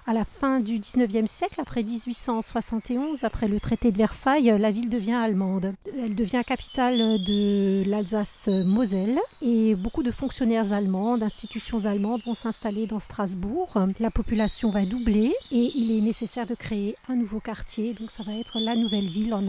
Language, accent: French, French